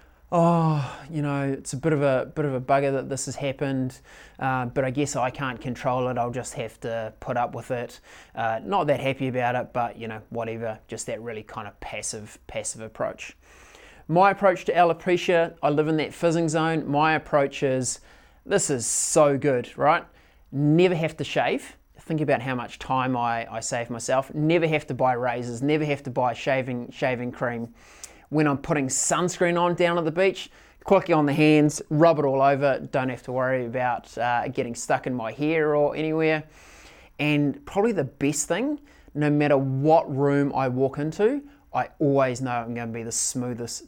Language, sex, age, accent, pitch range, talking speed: English, male, 20-39, Australian, 125-155 Hz, 195 wpm